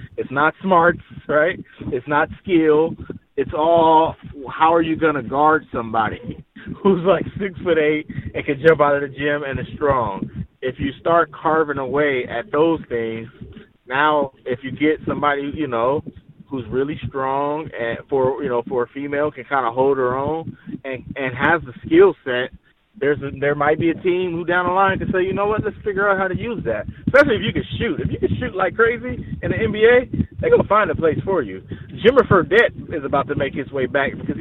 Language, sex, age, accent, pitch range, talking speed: English, male, 20-39, American, 140-175 Hz, 215 wpm